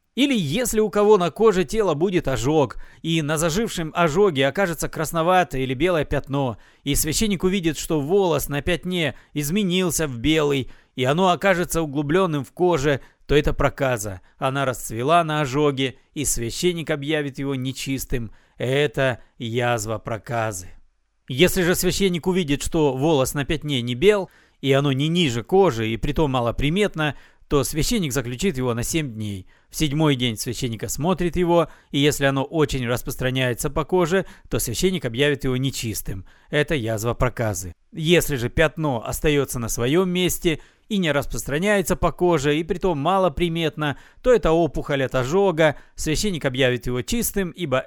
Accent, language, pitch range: native, Russian, 130-175 Hz